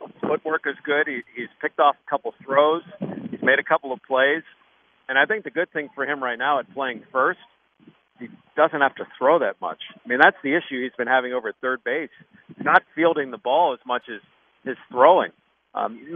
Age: 50-69